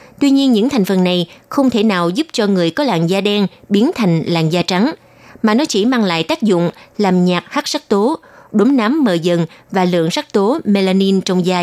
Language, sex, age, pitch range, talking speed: Vietnamese, female, 20-39, 180-240 Hz, 225 wpm